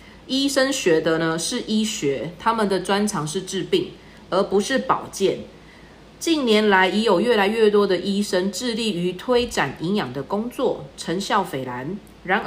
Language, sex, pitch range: Chinese, female, 175-230 Hz